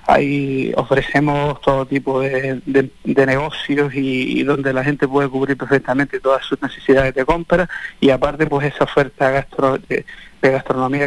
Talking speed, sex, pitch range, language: 165 wpm, male, 135-150 Hz, Spanish